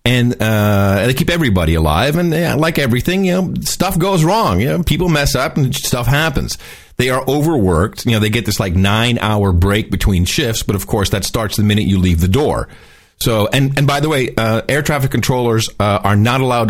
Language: English